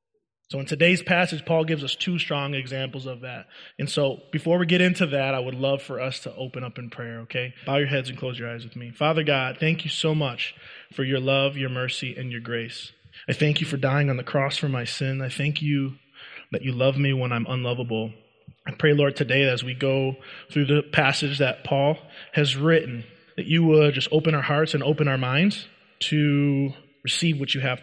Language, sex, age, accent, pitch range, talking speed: English, male, 20-39, American, 130-160 Hz, 225 wpm